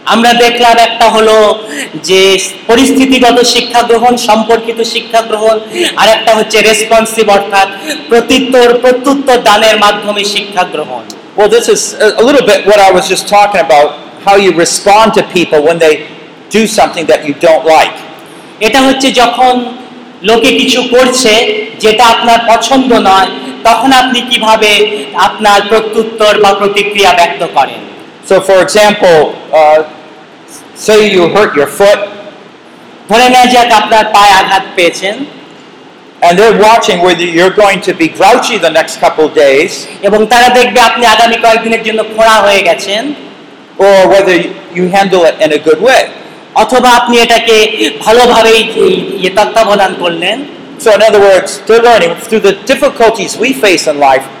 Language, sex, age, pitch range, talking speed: Bengali, male, 50-69, 190-235 Hz, 85 wpm